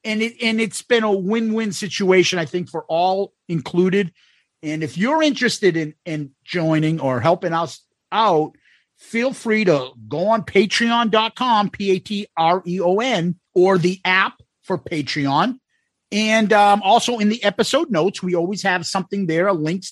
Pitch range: 160-220 Hz